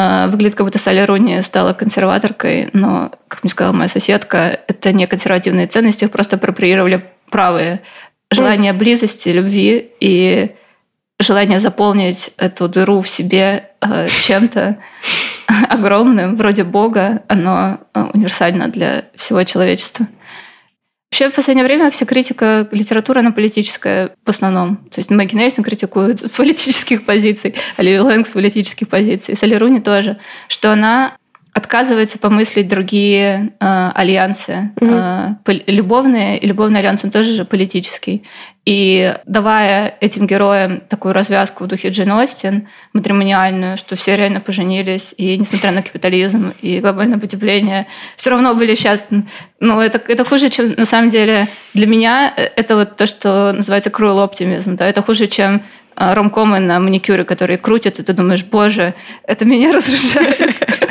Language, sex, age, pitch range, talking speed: Russian, female, 20-39, 195-225 Hz, 140 wpm